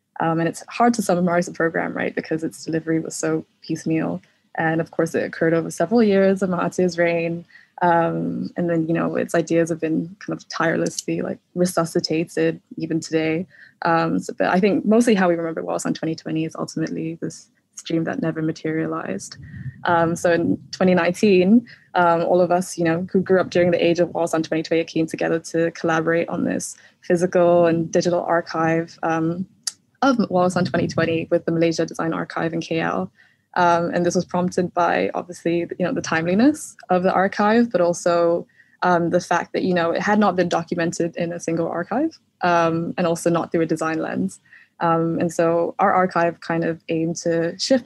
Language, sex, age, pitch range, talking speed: English, female, 20-39, 165-180 Hz, 190 wpm